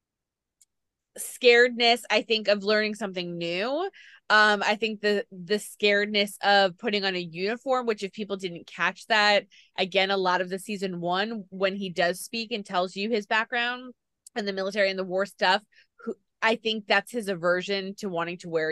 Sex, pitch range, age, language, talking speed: female, 190-235 Hz, 20-39, English, 180 wpm